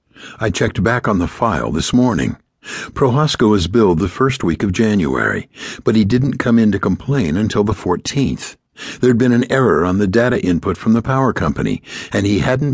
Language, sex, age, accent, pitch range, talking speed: English, male, 60-79, American, 90-130 Hz, 195 wpm